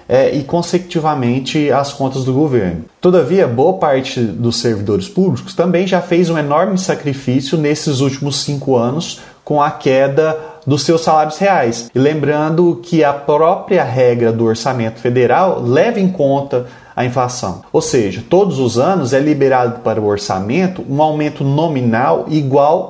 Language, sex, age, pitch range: Portuguese, male, 30-49, 130-185 Hz